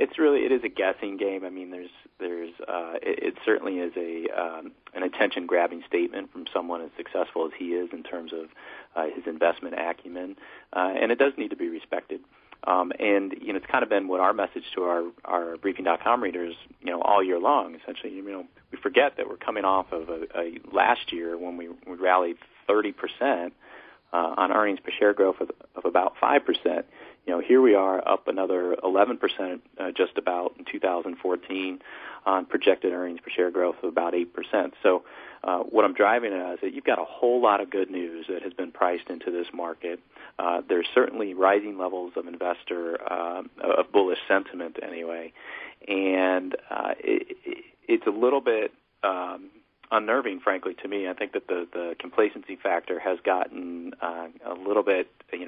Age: 40-59